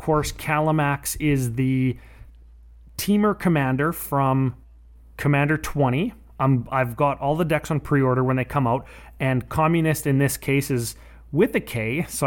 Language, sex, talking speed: English, male, 155 wpm